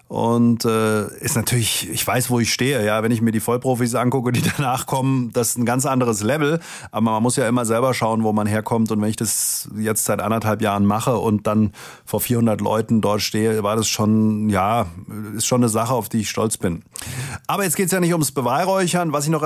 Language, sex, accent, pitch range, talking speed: German, male, German, 115-145 Hz, 230 wpm